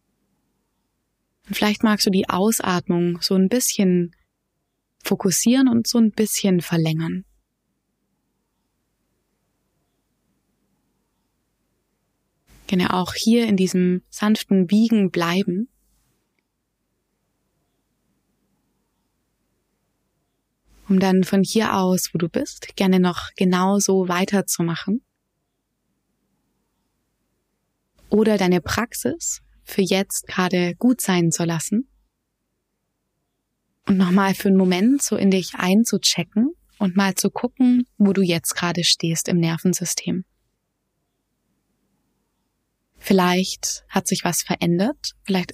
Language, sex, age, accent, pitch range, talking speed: German, female, 20-39, German, 180-210 Hz, 95 wpm